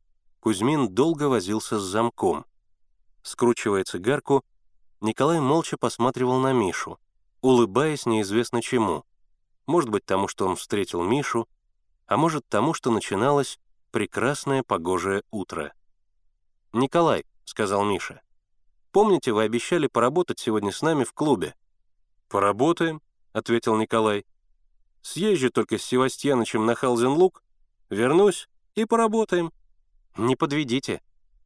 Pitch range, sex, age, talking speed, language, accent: 105-145 Hz, male, 30-49, 105 wpm, Russian, native